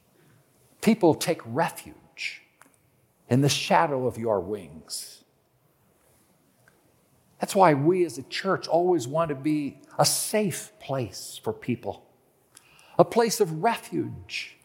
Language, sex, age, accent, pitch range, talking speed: English, male, 50-69, American, 140-195 Hz, 115 wpm